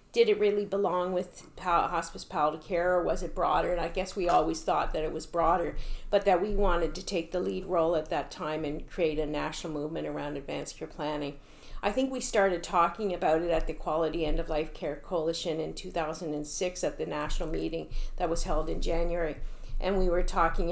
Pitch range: 155-180 Hz